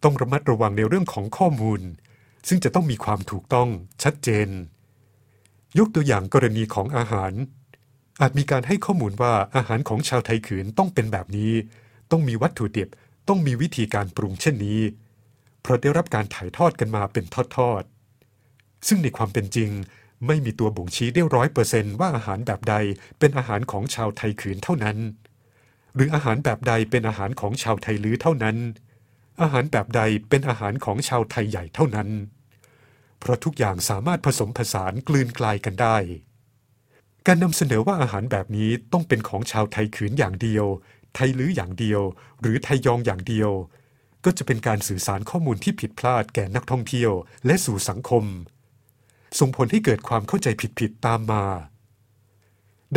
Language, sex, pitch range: Thai, male, 105-130 Hz